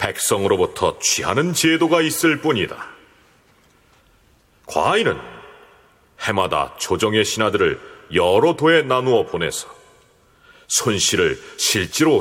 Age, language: 40-59, Korean